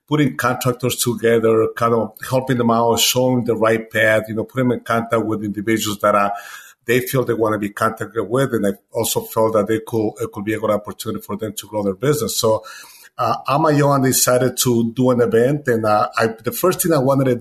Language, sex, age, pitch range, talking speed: English, male, 50-69, 110-125 Hz, 230 wpm